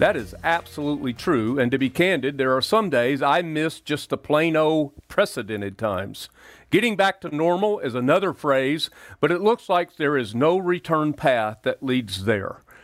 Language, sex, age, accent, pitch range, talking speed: English, male, 40-59, American, 125-175 Hz, 180 wpm